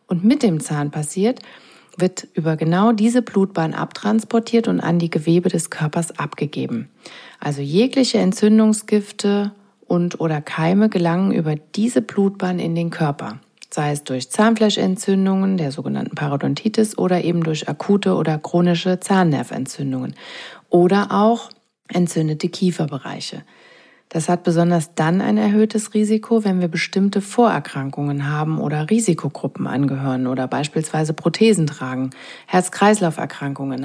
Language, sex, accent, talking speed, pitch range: German, female, German, 120 wpm, 160-205 Hz